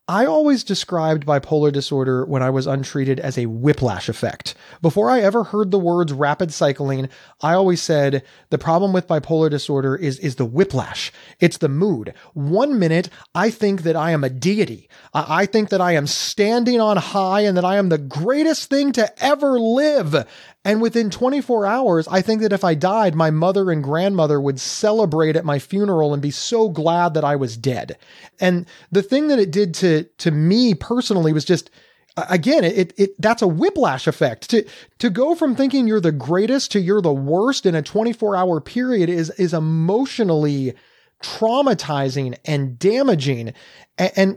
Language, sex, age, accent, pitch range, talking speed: English, male, 30-49, American, 150-210 Hz, 185 wpm